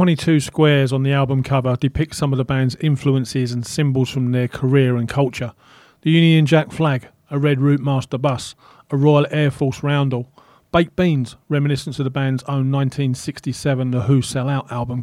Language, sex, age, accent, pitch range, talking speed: English, male, 40-59, British, 130-155 Hz, 185 wpm